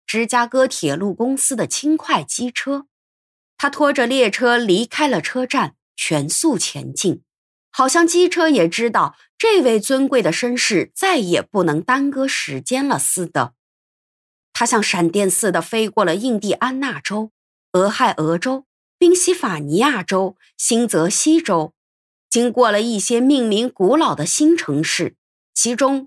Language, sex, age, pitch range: Chinese, female, 20-39, 185-285 Hz